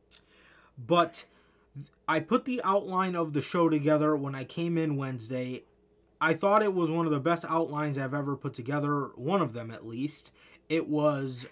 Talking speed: 175 wpm